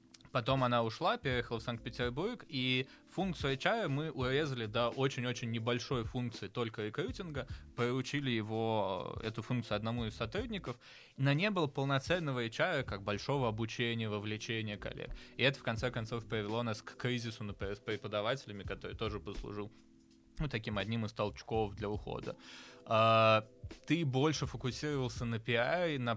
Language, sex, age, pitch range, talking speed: Russian, male, 20-39, 110-135 Hz, 140 wpm